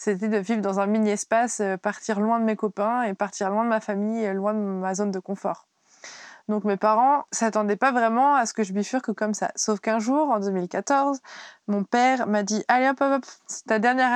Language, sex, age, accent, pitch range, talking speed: French, female, 20-39, French, 200-230 Hz, 240 wpm